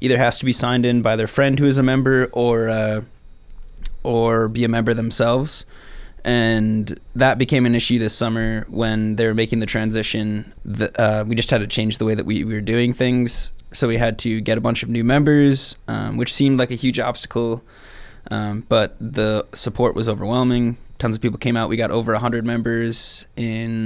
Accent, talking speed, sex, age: American, 205 wpm, male, 20-39